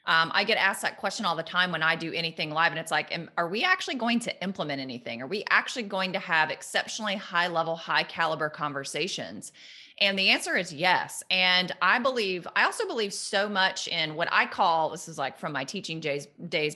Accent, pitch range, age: American, 165-215 Hz, 30-49